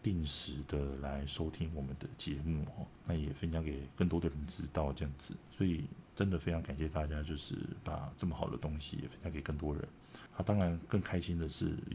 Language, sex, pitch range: Chinese, male, 75-95 Hz